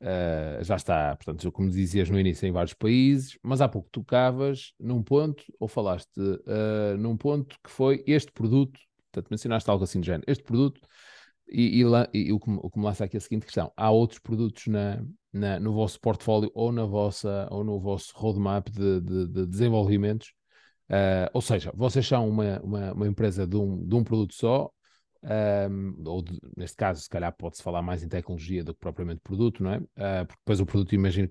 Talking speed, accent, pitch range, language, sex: 190 wpm, Brazilian, 95-115 Hz, Portuguese, male